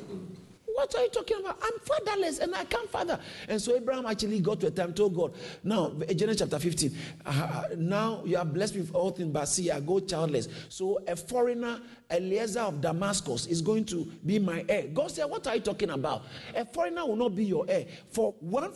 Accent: Nigerian